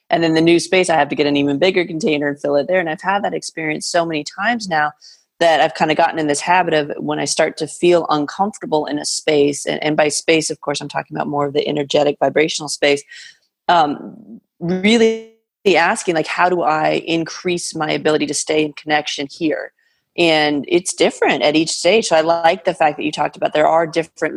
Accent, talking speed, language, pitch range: American, 225 wpm, English, 145-175 Hz